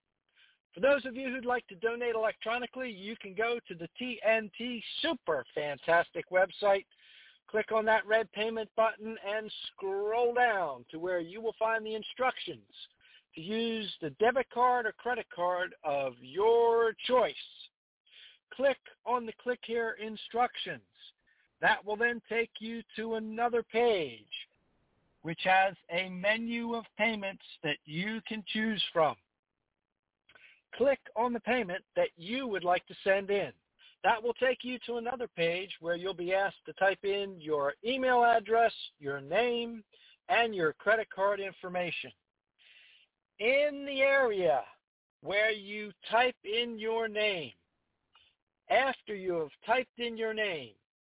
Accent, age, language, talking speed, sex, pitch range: American, 60-79, English, 140 wpm, male, 190-235 Hz